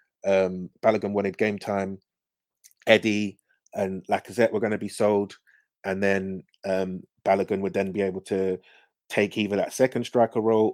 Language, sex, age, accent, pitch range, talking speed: English, male, 30-49, British, 95-110 Hz, 155 wpm